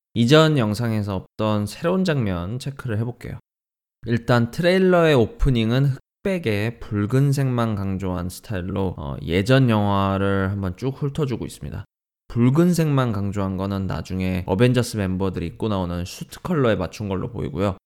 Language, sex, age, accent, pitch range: Korean, male, 20-39, native, 95-140 Hz